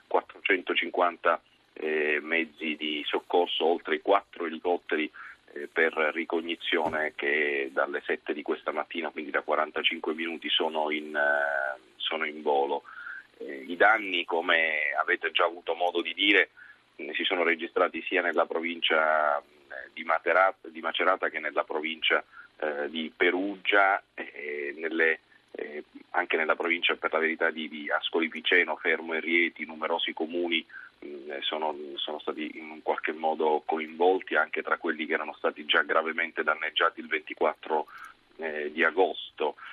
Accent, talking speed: native, 130 wpm